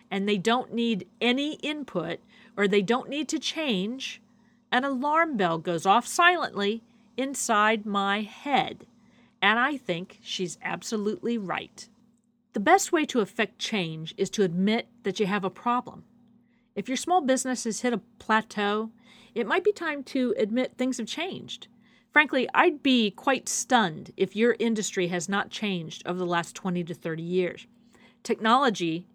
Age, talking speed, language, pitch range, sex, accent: 40-59, 160 wpm, English, 200-245 Hz, female, American